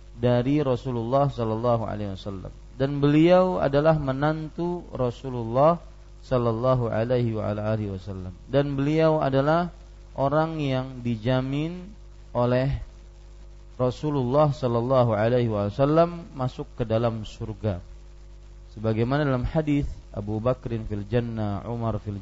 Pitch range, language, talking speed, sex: 110-145 Hz, Malay, 100 wpm, male